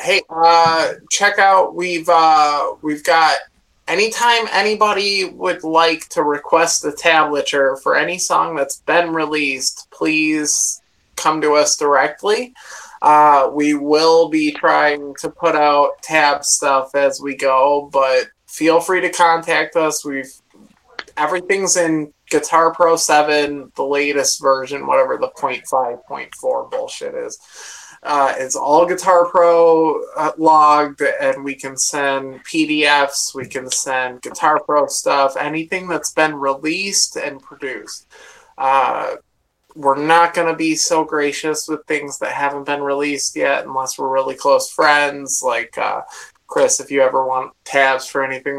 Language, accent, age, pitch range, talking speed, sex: English, American, 20-39, 140-170 Hz, 145 wpm, male